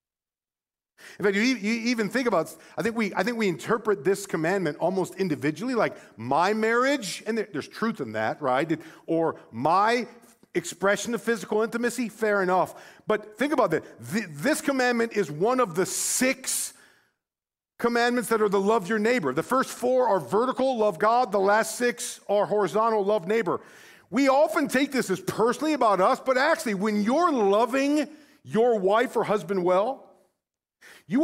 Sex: male